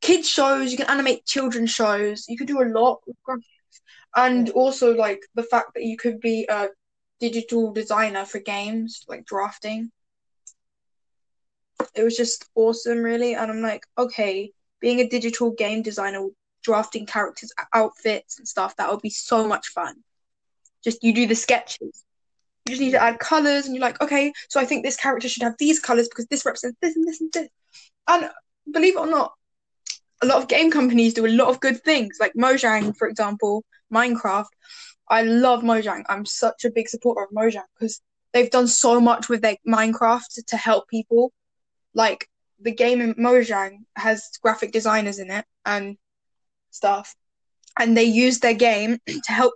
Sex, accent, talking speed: female, British, 180 wpm